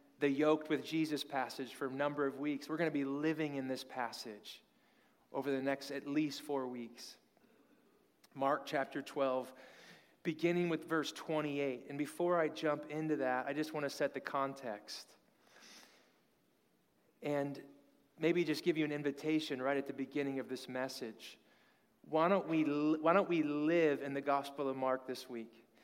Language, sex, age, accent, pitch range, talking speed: English, male, 30-49, American, 140-160 Hz, 165 wpm